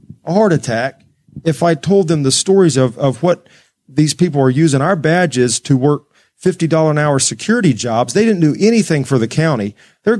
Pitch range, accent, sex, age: 125-165 Hz, American, male, 40-59